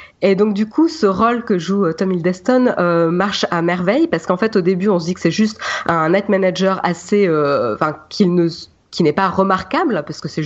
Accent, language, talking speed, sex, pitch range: French, French, 230 wpm, female, 170-210 Hz